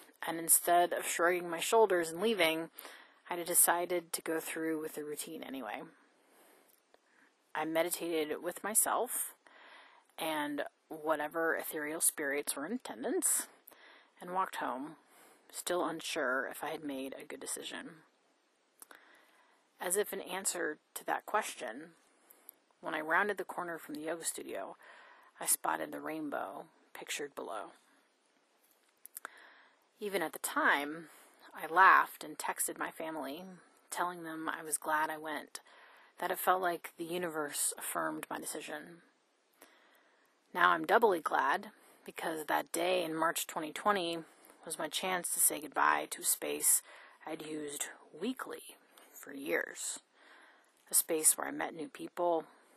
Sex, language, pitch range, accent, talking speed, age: female, English, 155-190 Hz, American, 135 wpm, 30-49